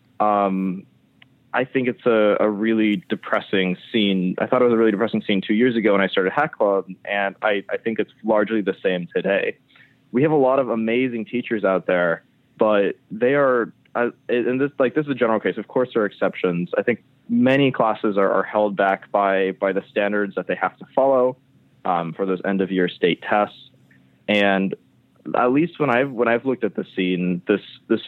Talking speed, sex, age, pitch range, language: 205 wpm, male, 20-39, 95-120 Hz, English